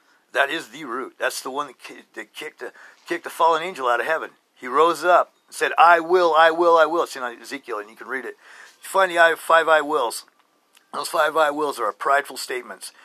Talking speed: 225 wpm